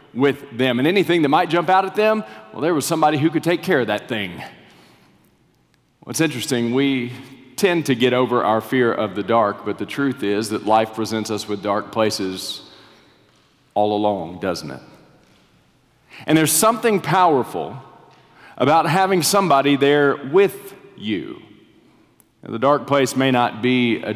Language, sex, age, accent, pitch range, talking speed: English, male, 40-59, American, 120-185 Hz, 160 wpm